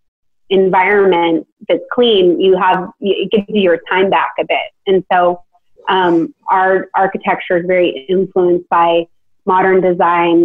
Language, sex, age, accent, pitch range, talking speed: English, female, 30-49, American, 175-200 Hz, 140 wpm